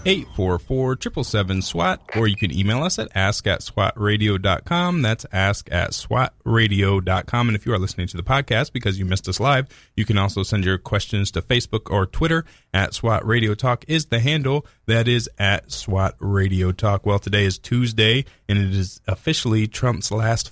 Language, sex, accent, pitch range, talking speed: English, male, American, 100-125 Hz, 180 wpm